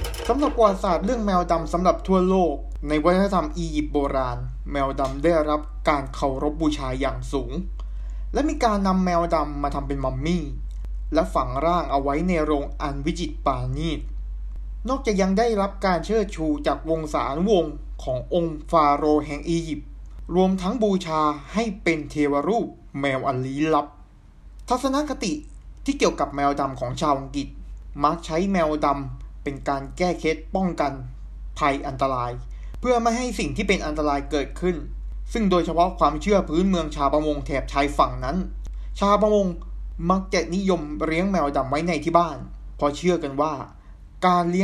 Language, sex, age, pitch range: Thai, male, 20-39, 140-180 Hz